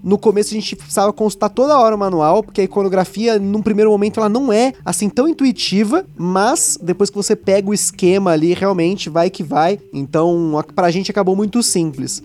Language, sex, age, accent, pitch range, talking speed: Portuguese, male, 20-39, Brazilian, 175-210 Hz, 195 wpm